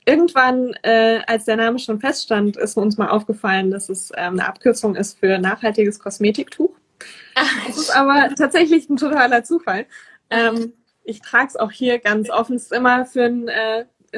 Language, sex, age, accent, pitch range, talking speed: German, female, 20-39, German, 205-235 Hz, 175 wpm